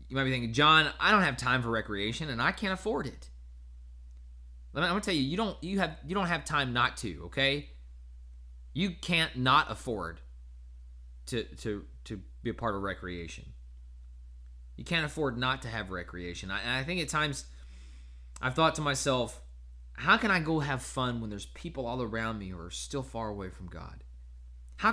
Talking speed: 195 wpm